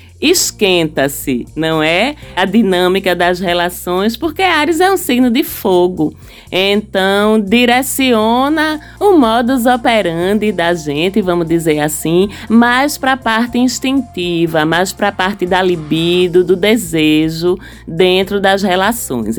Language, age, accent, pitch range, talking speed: Portuguese, 20-39, Brazilian, 170-220 Hz, 125 wpm